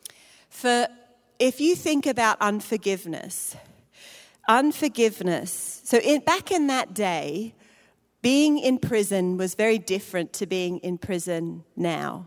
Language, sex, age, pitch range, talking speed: English, female, 40-59, 180-230 Hz, 115 wpm